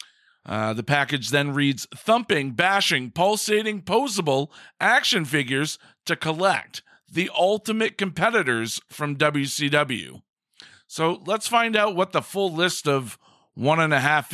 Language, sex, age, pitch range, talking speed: English, male, 40-59, 145-195 Hz, 130 wpm